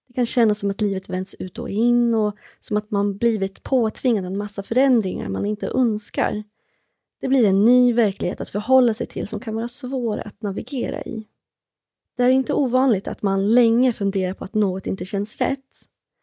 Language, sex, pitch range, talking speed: Swedish, female, 195-245 Hz, 190 wpm